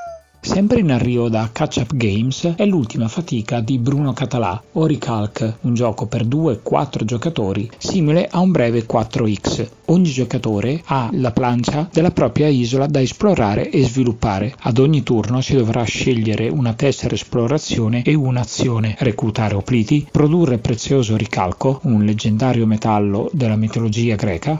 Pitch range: 110-155 Hz